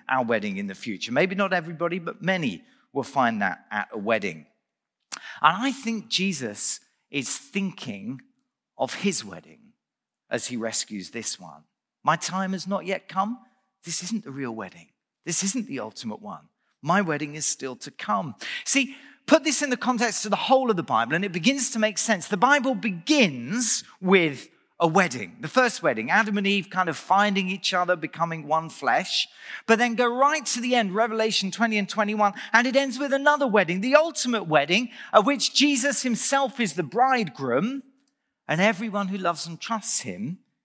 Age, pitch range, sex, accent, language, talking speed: 40-59, 170-240 Hz, male, British, English, 185 wpm